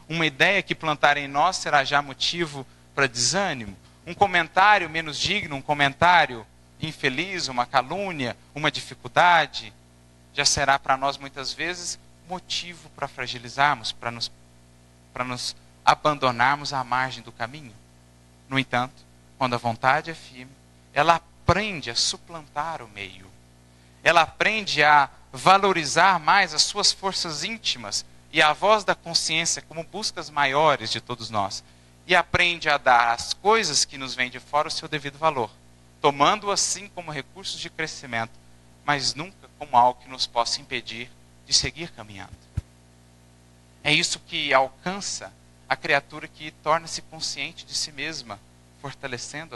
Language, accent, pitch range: Portuguese, Brazilian, 110-160 Hz